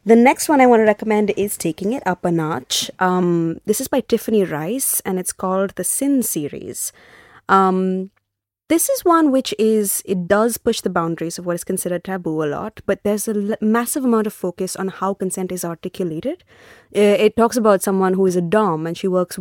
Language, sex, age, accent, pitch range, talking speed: Hindi, female, 20-39, native, 175-220 Hz, 210 wpm